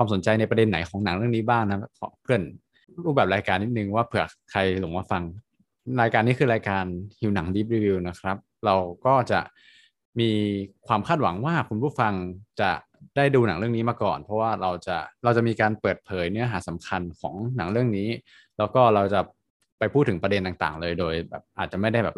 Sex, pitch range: male, 95-115 Hz